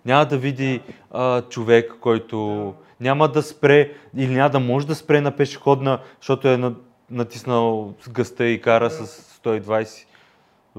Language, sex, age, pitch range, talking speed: Bulgarian, male, 30-49, 125-180 Hz, 140 wpm